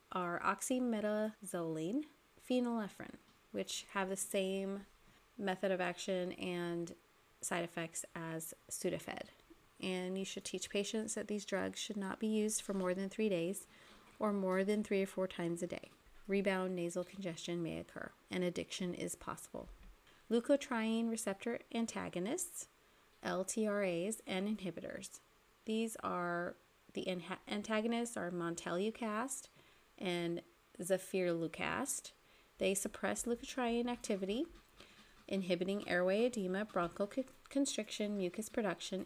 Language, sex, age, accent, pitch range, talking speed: English, female, 30-49, American, 180-215 Hz, 115 wpm